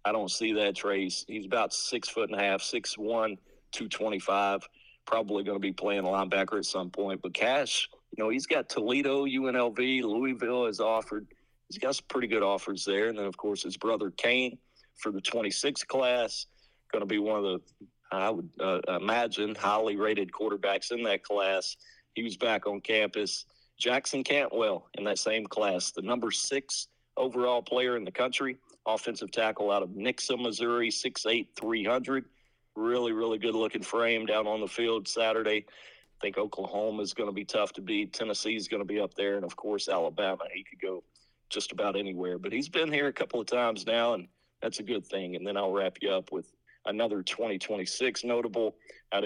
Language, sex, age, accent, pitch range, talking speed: English, male, 40-59, American, 100-120 Hz, 190 wpm